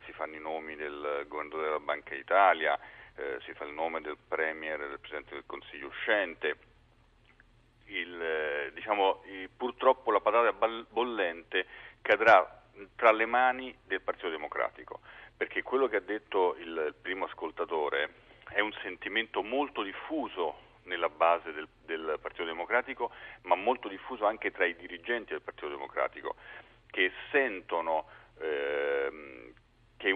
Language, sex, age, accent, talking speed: Italian, male, 40-59, native, 135 wpm